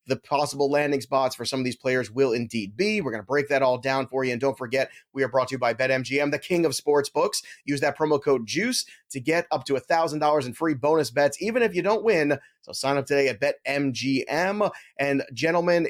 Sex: male